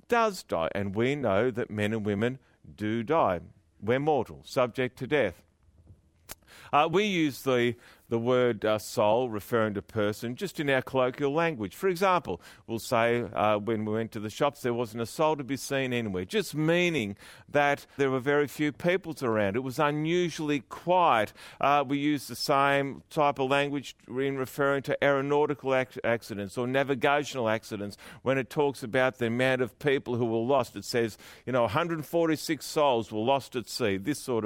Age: 50-69